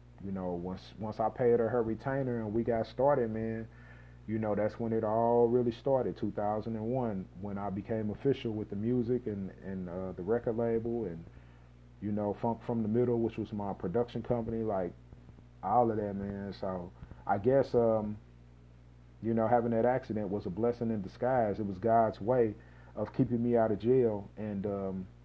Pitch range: 100-120 Hz